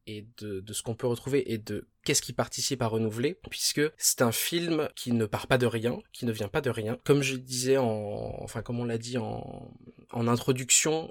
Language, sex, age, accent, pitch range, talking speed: French, male, 20-39, French, 115-140 Hz, 225 wpm